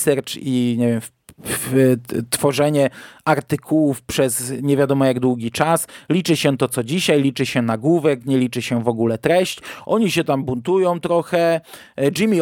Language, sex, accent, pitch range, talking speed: Polish, male, native, 135-165 Hz, 165 wpm